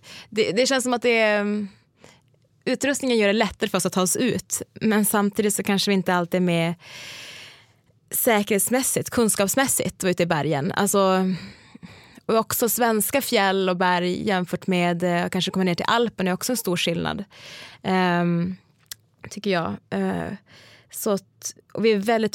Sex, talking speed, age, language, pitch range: female, 170 wpm, 20-39, English, 175-225 Hz